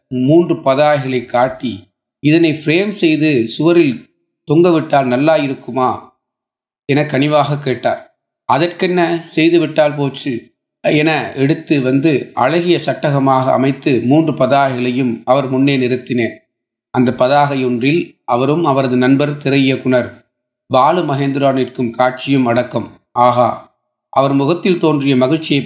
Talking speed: 105 wpm